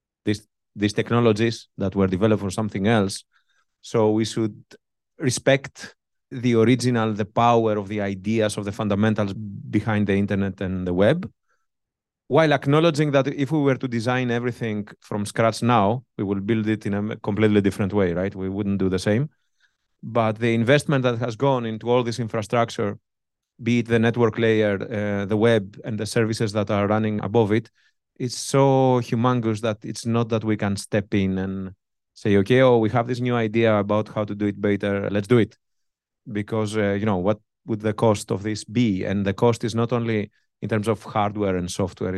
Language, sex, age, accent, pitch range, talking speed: English, male, 30-49, Spanish, 105-120 Hz, 190 wpm